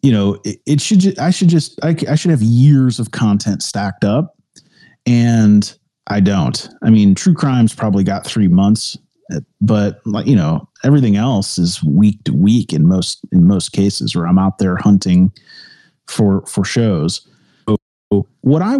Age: 30-49